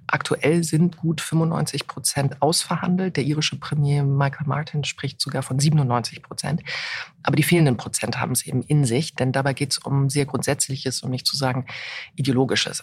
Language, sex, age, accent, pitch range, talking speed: German, female, 40-59, German, 140-160 Hz, 180 wpm